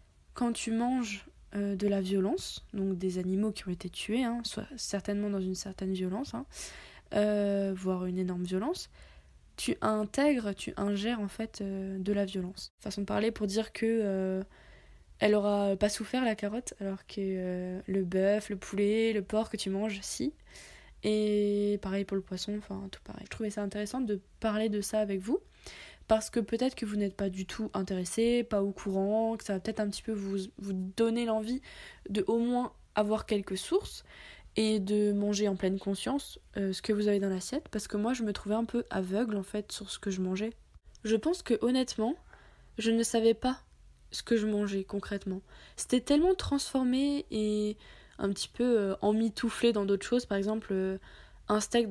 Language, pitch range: French, 195-225 Hz